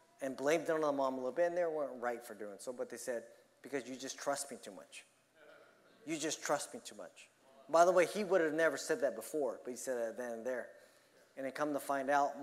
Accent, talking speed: American, 265 wpm